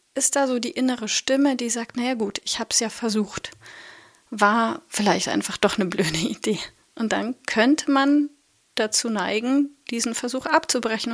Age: 30-49